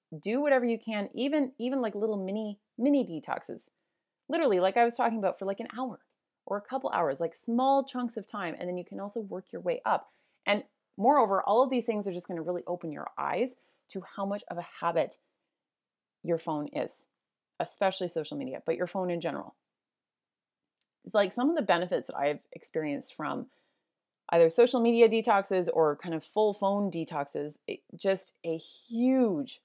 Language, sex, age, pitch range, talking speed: English, female, 30-49, 165-225 Hz, 190 wpm